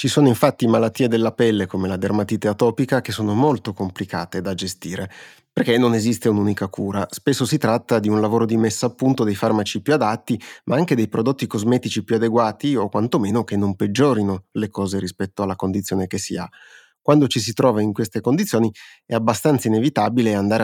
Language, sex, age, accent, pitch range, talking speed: Italian, male, 30-49, native, 105-120 Hz, 190 wpm